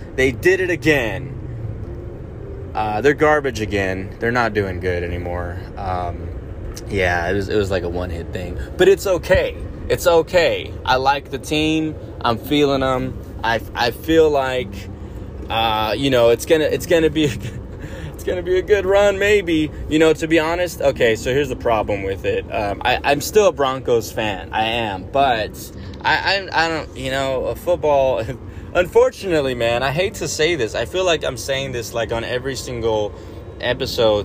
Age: 20-39